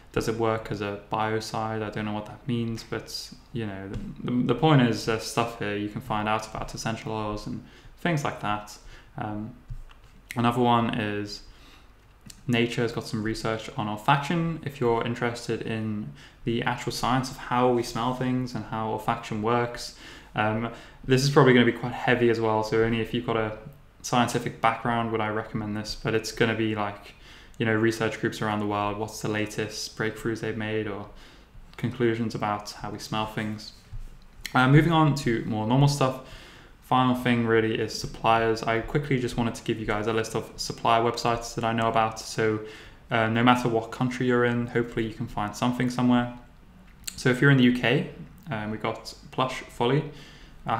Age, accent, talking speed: 10-29, British, 195 wpm